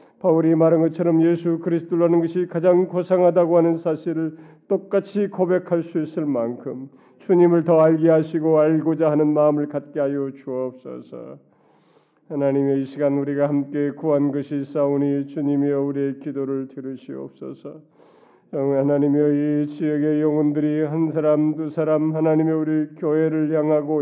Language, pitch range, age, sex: Korean, 145-165 Hz, 40-59, male